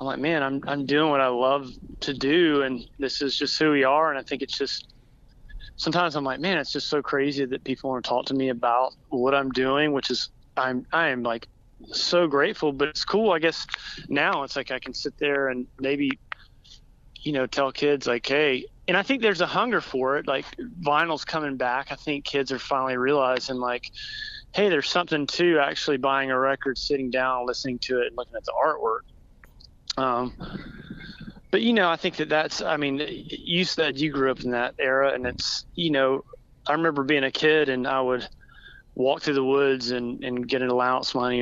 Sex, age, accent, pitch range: male, 30-49, American, 125-150 Hz